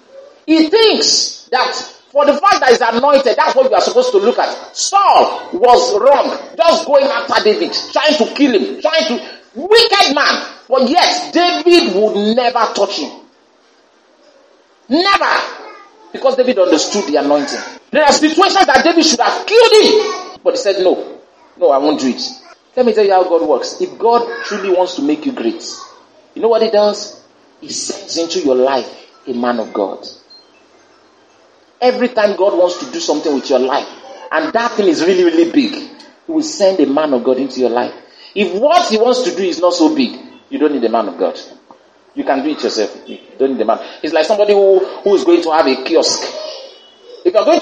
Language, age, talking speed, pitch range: English, 40-59, 200 wpm, 225-380 Hz